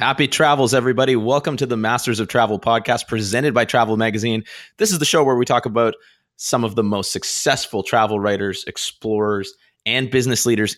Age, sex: 20-39, male